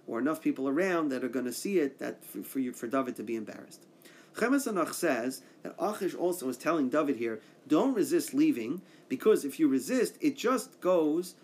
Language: English